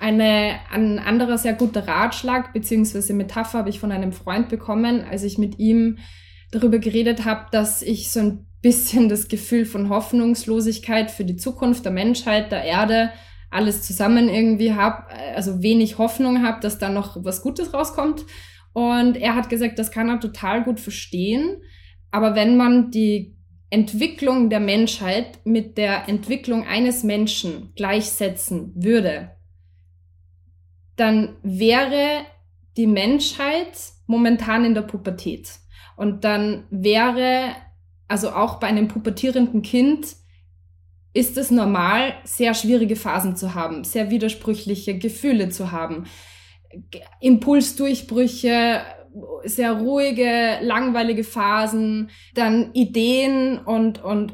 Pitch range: 200-235 Hz